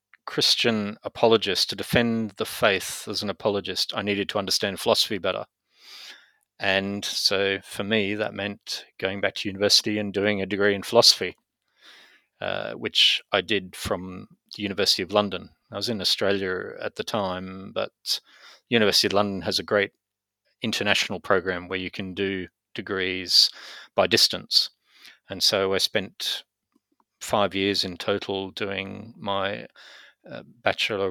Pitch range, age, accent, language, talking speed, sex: 95-105 Hz, 30-49, Australian, English, 145 wpm, male